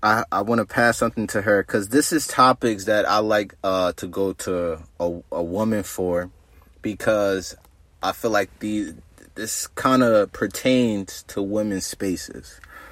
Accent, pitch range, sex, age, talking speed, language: American, 95-130 Hz, male, 30-49, 165 wpm, English